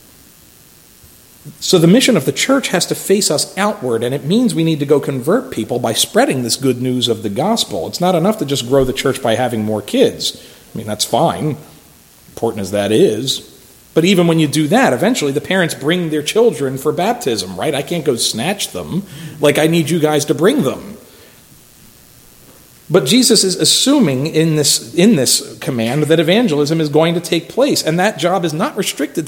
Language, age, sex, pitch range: English, 40-59, male, 140-200 Hz